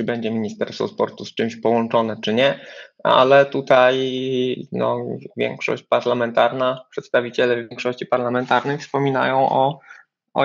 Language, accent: Polish, native